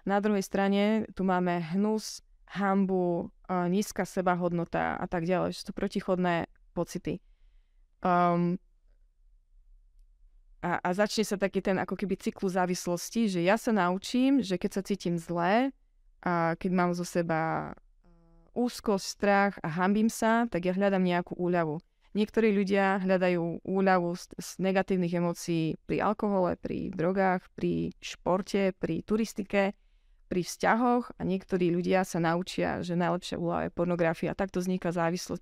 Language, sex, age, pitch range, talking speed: Slovak, female, 20-39, 165-195 Hz, 140 wpm